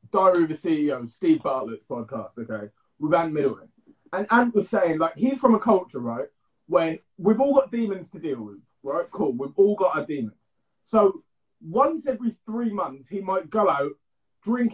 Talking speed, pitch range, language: 185 wpm, 160-235 Hz, English